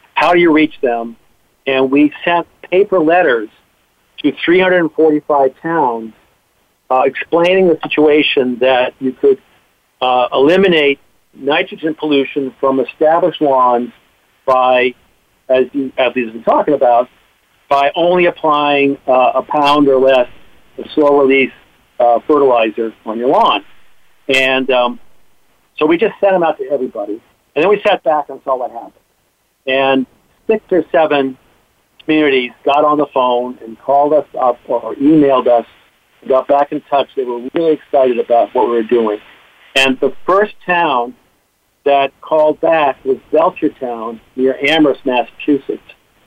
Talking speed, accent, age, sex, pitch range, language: 140 wpm, American, 50-69, male, 125-155 Hz, English